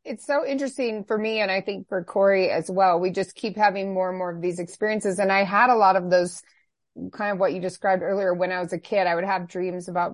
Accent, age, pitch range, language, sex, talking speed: American, 30-49, 175-205 Hz, English, female, 265 wpm